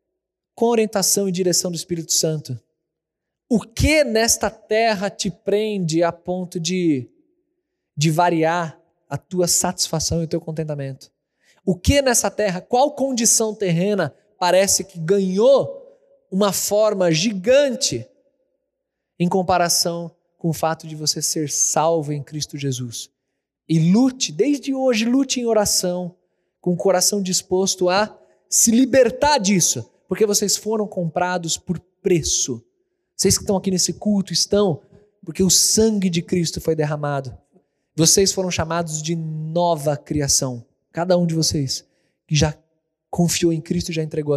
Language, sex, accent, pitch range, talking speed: Portuguese, male, Brazilian, 160-215 Hz, 140 wpm